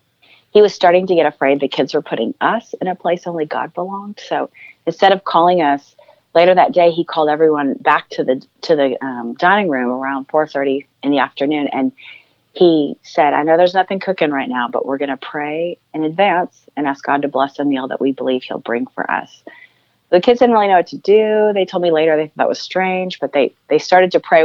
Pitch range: 140-185 Hz